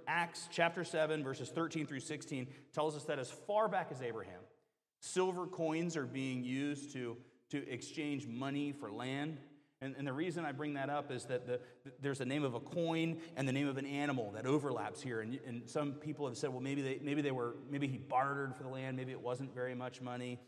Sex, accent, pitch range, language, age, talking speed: male, American, 125-155 Hz, English, 30-49, 225 wpm